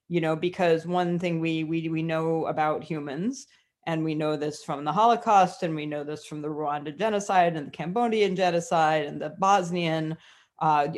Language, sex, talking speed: English, female, 185 wpm